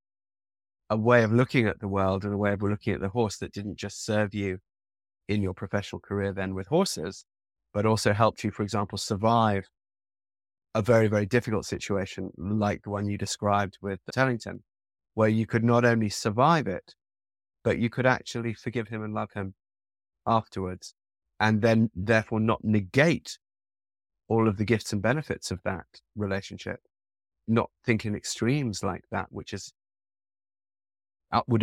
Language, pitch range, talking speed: English, 100-115 Hz, 165 wpm